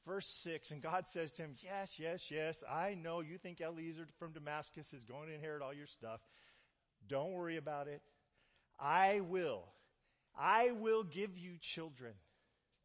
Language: English